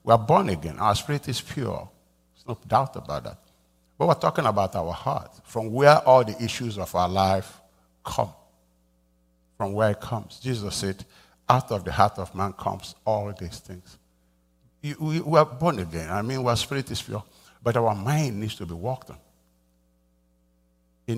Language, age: English, 60-79